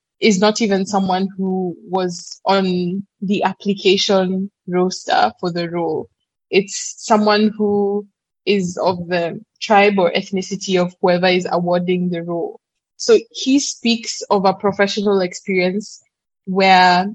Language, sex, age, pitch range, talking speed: English, female, 20-39, 180-210 Hz, 125 wpm